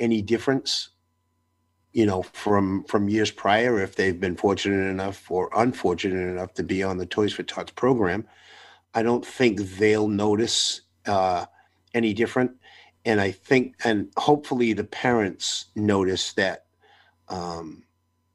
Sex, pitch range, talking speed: male, 90-110 Hz, 135 wpm